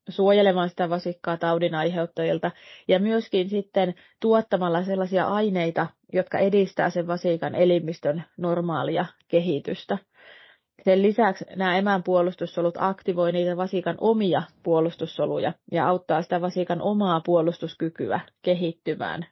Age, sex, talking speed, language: 30-49, female, 105 wpm, Finnish